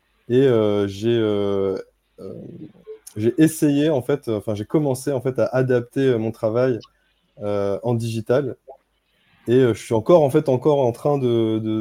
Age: 20-39